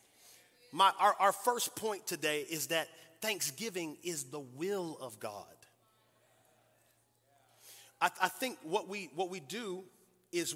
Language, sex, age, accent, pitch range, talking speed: English, male, 30-49, American, 145-205 Hz, 130 wpm